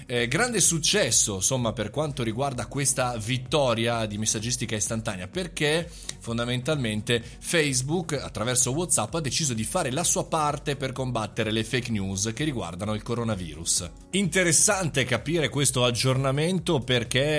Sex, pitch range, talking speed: male, 110-145 Hz, 130 wpm